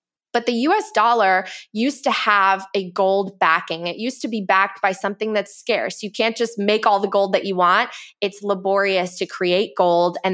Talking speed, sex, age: 205 wpm, female, 20-39